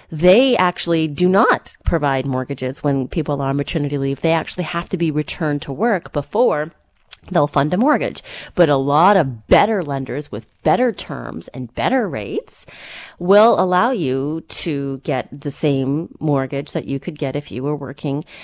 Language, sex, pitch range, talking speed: English, female, 145-195 Hz, 175 wpm